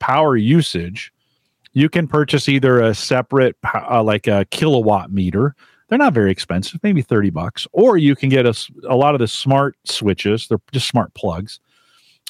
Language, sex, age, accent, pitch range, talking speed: English, male, 40-59, American, 100-135 Hz, 170 wpm